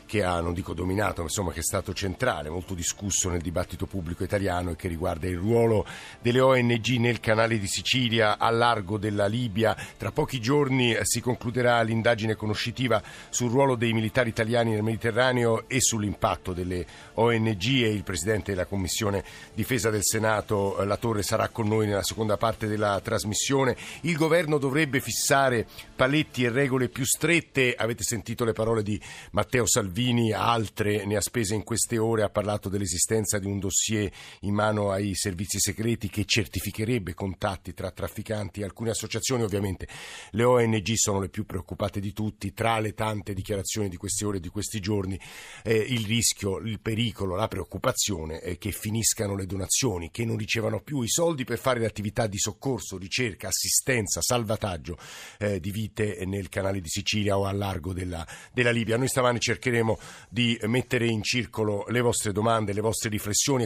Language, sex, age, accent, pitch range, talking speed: Italian, male, 50-69, native, 100-115 Hz, 175 wpm